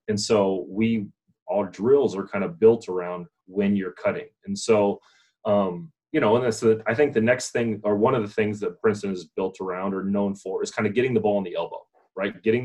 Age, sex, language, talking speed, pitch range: 30-49, male, English, 235 wpm, 100-115 Hz